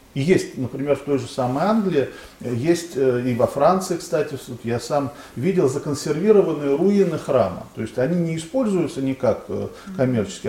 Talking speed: 150 wpm